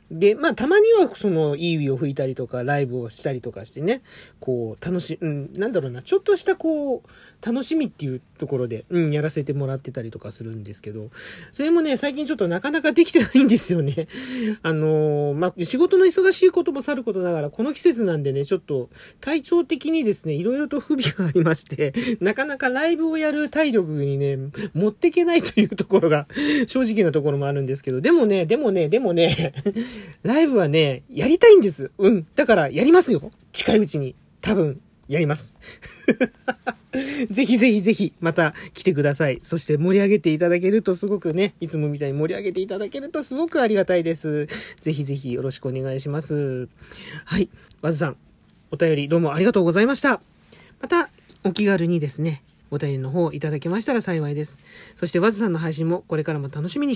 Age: 40-59